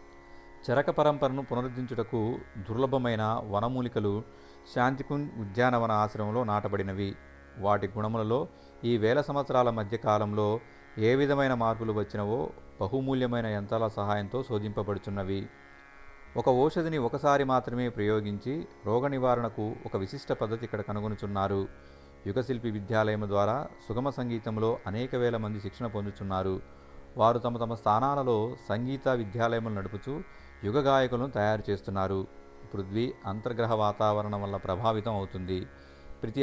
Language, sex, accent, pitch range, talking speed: Telugu, male, native, 100-125 Hz, 100 wpm